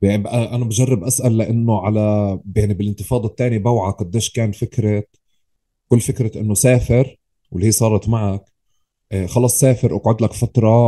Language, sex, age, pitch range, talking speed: Arabic, male, 30-49, 100-120 Hz, 155 wpm